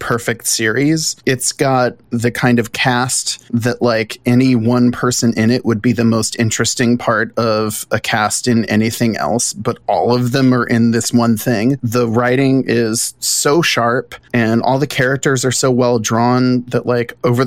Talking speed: 180 wpm